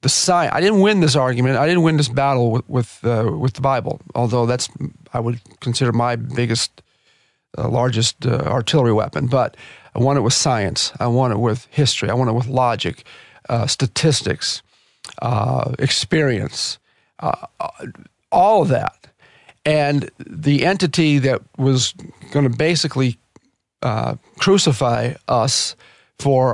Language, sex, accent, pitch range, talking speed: English, male, American, 120-155 Hz, 150 wpm